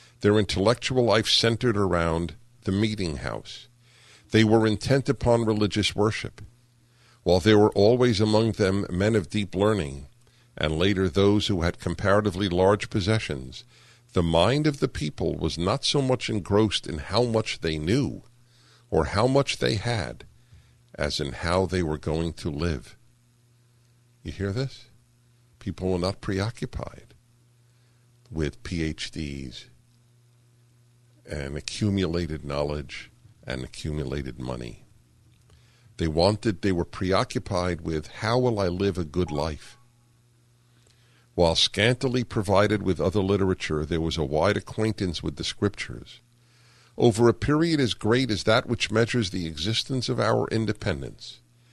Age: 50-69